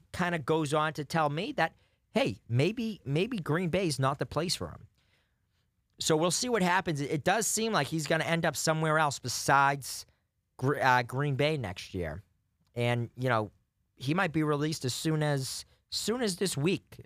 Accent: American